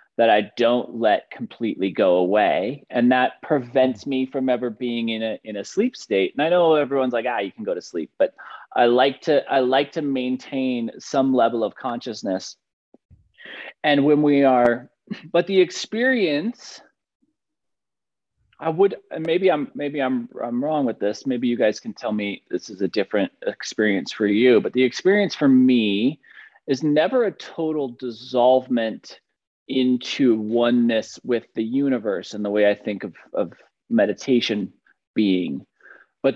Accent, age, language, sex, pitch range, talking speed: American, 30-49, English, male, 120-155 Hz, 160 wpm